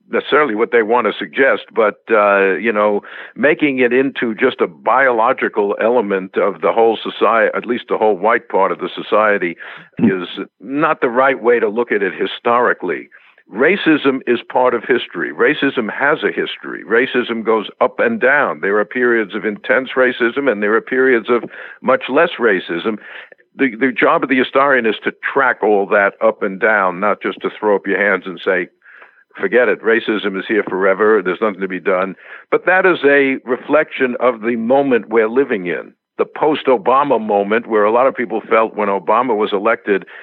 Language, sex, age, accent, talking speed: English, male, 60-79, American, 190 wpm